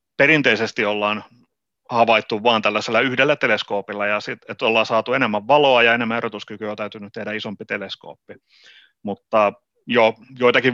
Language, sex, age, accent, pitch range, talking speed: Finnish, male, 30-49, native, 100-120 Hz, 140 wpm